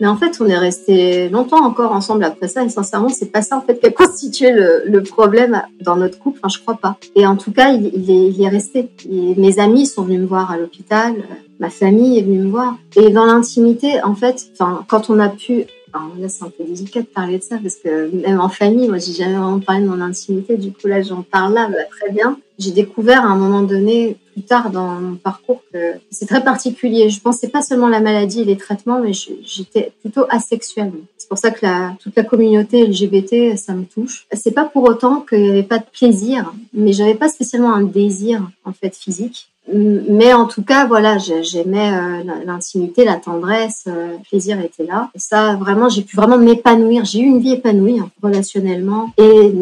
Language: French